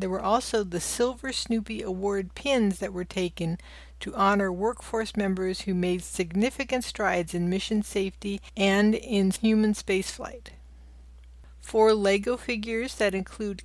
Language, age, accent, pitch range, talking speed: English, 60-79, American, 185-225 Hz, 135 wpm